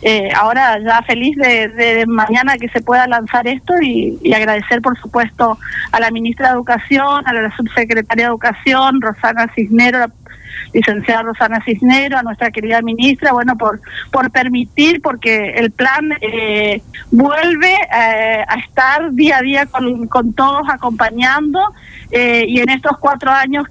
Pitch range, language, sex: 230-265 Hz, Spanish, female